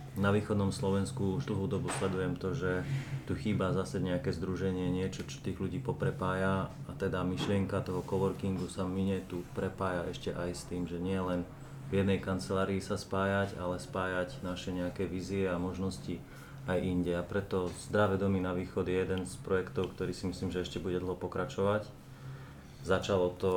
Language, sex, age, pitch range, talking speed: English, male, 30-49, 90-105 Hz, 175 wpm